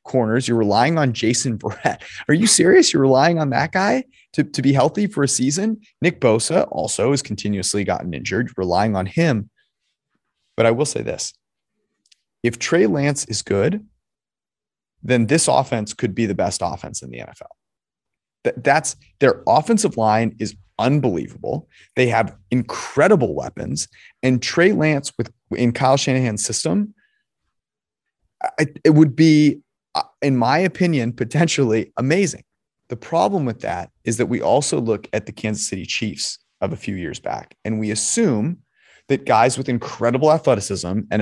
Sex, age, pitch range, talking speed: male, 30-49, 110-150 Hz, 155 wpm